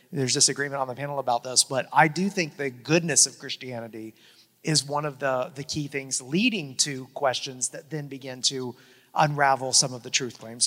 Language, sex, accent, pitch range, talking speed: English, male, American, 135-160 Hz, 195 wpm